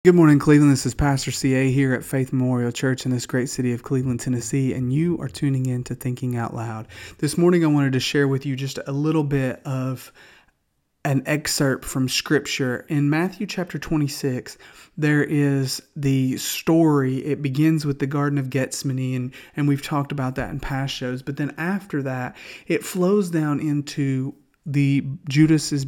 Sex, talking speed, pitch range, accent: male, 185 wpm, 130-155 Hz, American